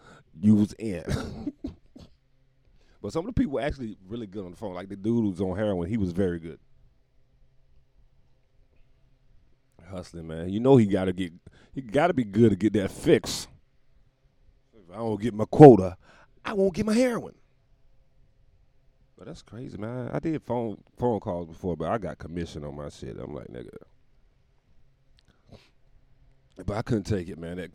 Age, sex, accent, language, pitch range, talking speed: 40-59, male, American, English, 90-130 Hz, 175 wpm